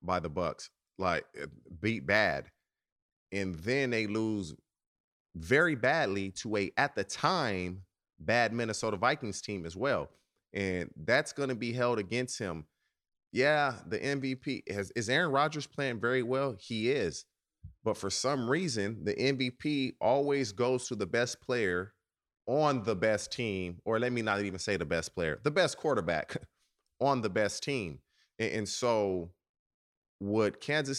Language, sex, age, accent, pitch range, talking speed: English, male, 30-49, American, 100-130 Hz, 155 wpm